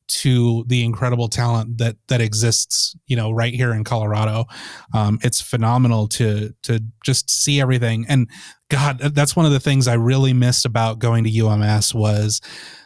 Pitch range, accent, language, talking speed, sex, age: 115-140 Hz, American, English, 170 wpm, male, 30-49